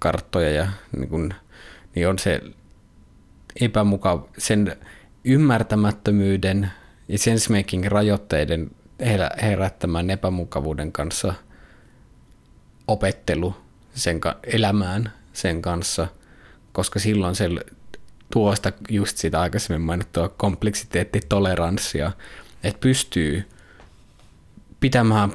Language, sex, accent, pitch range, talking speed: Finnish, male, native, 85-105 Hz, 75 wpm